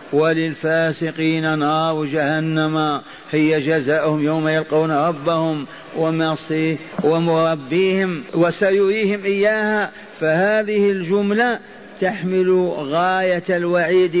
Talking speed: 70 wpm